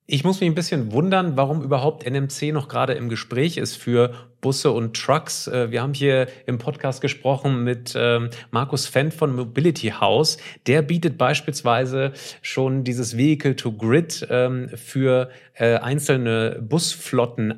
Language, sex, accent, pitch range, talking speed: German, male, German, 120-150 Hz, 135 wpm